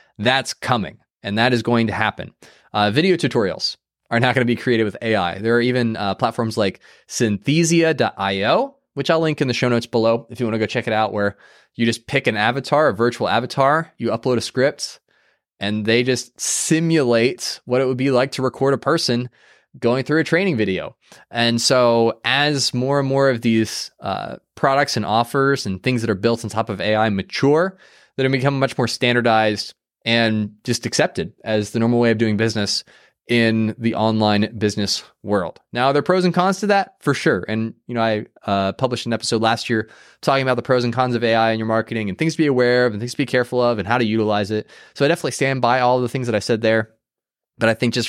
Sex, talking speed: male, 230 wpm